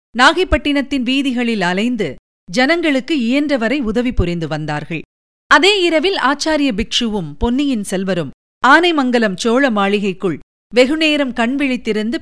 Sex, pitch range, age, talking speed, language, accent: female, 195-280 Hz, 50-69, 95 wpm, Tamil, native